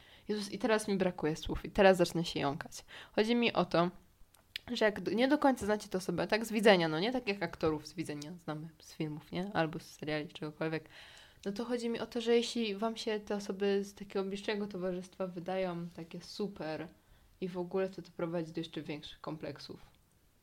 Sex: female